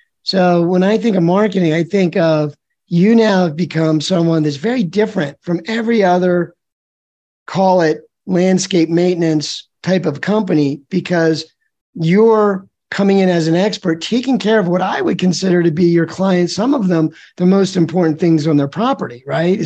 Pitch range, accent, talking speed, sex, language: 160-190 Hz, American, 170 wpm, male, English